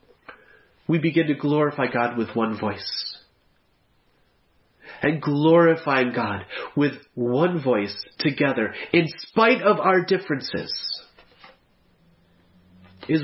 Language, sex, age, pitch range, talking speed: English, male, 40-59, 125-175 Hz, 95 wpm